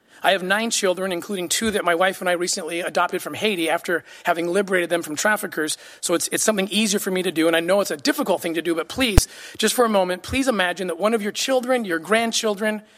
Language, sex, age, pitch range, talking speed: English, male, 40-59, 180-230 Hz, 250 wpm